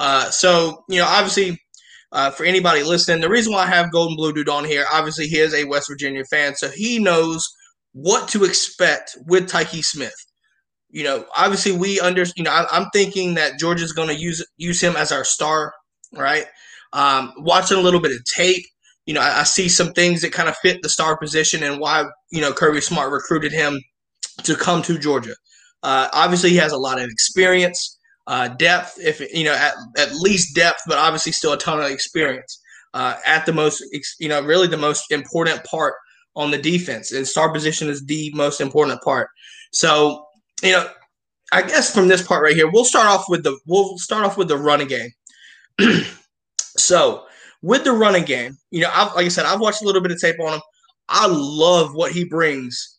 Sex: male